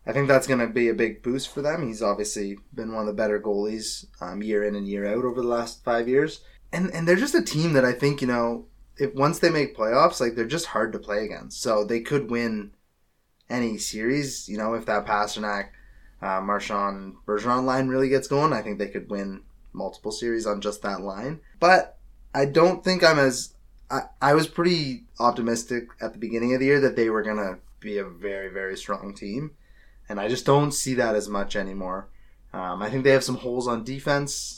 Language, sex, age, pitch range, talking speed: English, male, 20-39, 105-130 Hz, 220 wpm